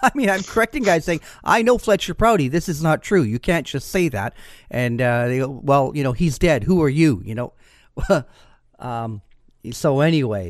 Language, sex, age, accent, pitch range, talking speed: English, male, 40-59, American, 115-140 Hz, 205 wpm